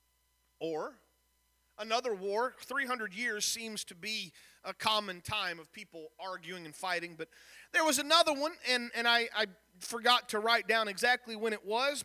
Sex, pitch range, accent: male, 200-295 Hz, American